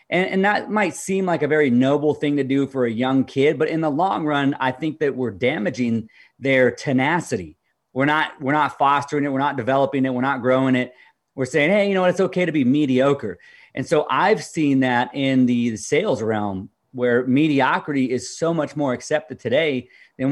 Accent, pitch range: American, 125-155 Hz